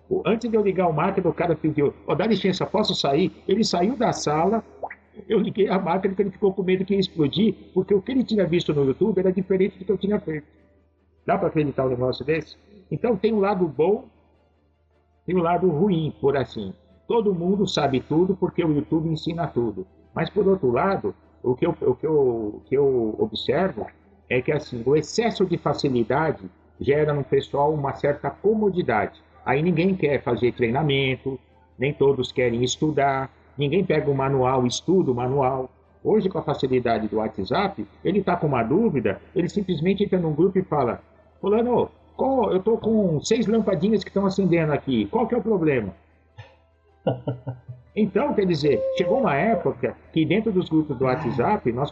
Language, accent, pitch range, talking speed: Portuguese, Brazilian, 130-195 Hz, 185 wpm